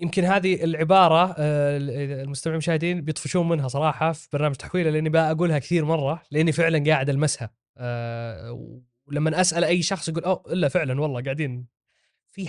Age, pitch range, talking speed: 20-39, 135-160 Hz, 150 wpm